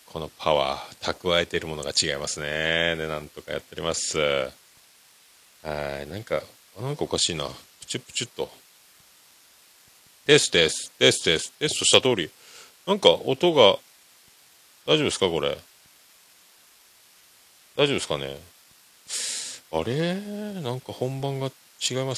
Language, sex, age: Japanese, male, 40-59